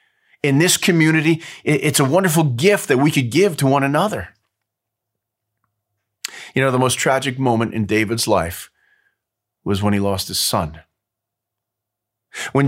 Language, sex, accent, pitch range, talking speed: English, male, American, 115-155 Hz, 140 wpm